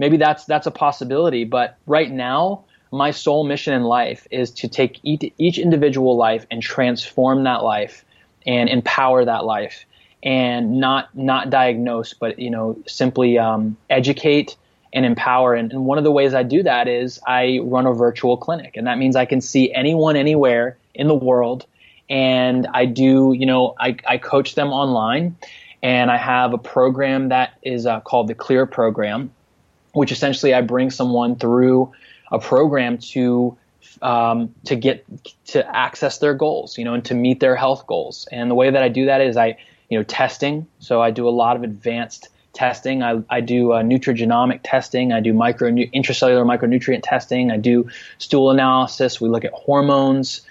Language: English